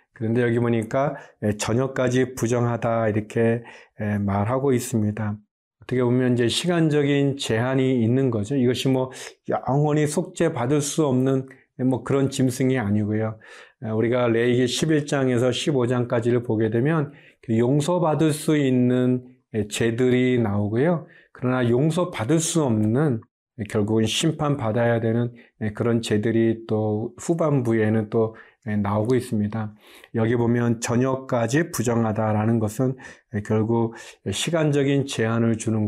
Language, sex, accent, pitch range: Korean, male, native, 115-140 Hz